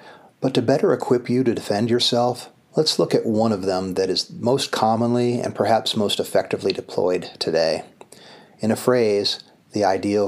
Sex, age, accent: male, 50-69, American